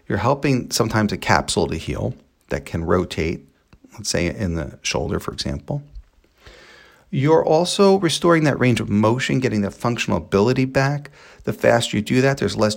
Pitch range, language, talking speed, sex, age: 100-140 Hz, English, 170 wpm, male, 40-59